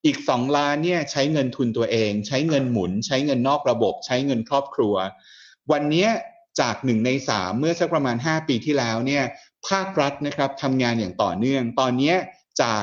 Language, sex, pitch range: Thai, male, 115-150 Hz